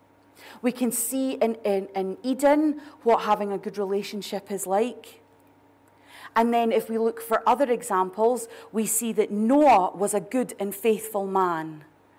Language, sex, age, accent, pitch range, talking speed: English, female, 30-49, British, 175-235 Hz, 155 wpm